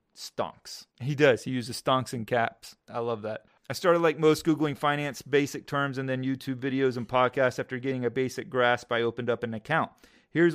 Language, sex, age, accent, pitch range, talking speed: English, male, 30-49, American, 120-150 Hz, 205 wpm